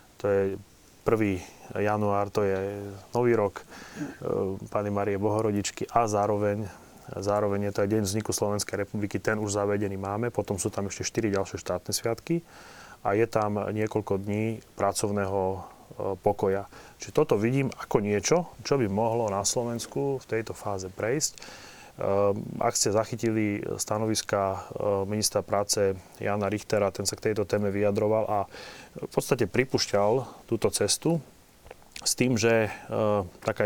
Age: 30-49